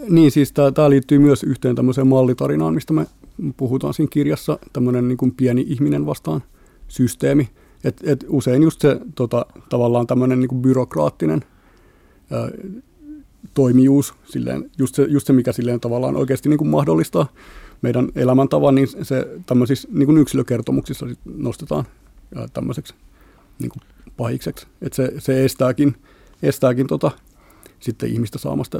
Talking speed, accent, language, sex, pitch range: 135 wpm, native, Finnish, male, 125-145 Hz